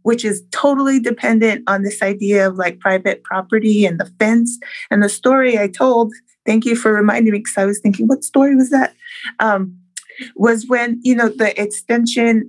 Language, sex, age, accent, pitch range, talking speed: English, female, 20-39, American, 200-245 Hz, 185 wpm